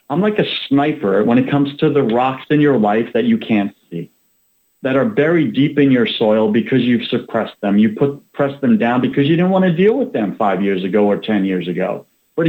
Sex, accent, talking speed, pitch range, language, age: male, American, 235 wpm, 110-165 Hz, English, 40-59